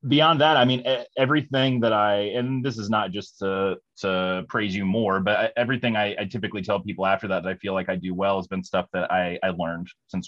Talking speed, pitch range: 230 wpm, 95-120 Hz